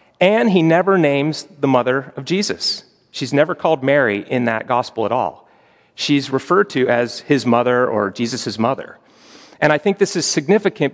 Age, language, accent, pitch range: 40-59, English, American, 120-155 Hz